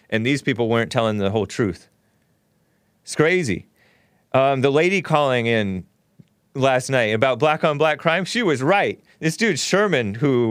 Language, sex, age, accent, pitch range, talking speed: English, male, 30-49, American, 115-170 Hz, 150 wpm